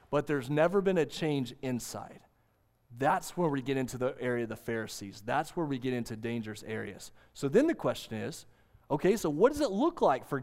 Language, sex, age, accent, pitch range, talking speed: English, male, 30-49, American, 120-190 Hz, 215 wpm